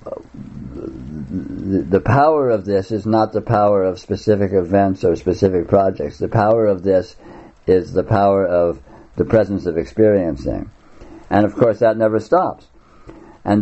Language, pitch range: English, 100-120 Hz